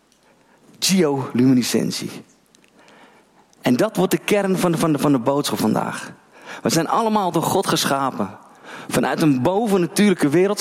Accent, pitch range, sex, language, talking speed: Dutch, 125-190 Hz, male, Dutch, 135 wpm